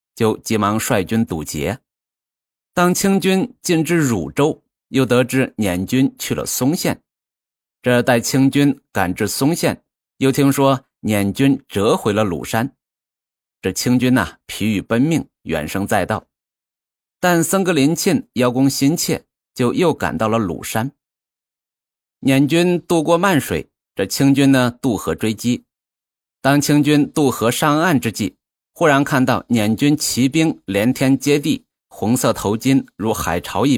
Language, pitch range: Chinese, 100-145 Hz